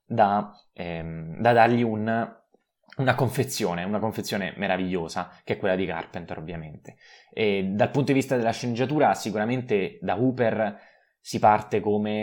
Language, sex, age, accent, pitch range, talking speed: Italian, male, 20-39, native, 95-115 Hz, 140 wpm